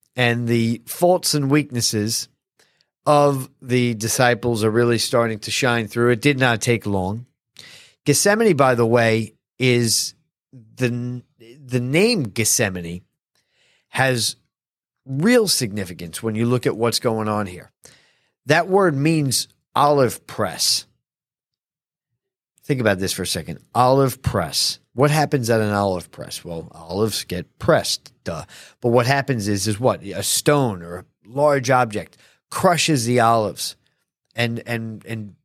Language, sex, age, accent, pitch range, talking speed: English, male, 40-59, American, 110-145 Hz, 135 wpm